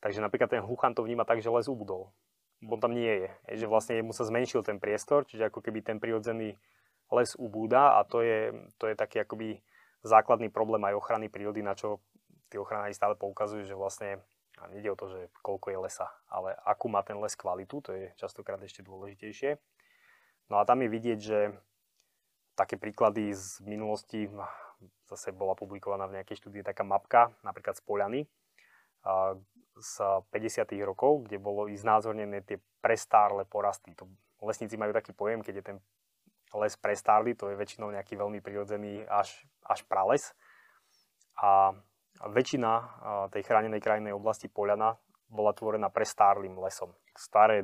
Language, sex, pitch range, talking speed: Slovak, male, 100-110 Hz, 160 wpm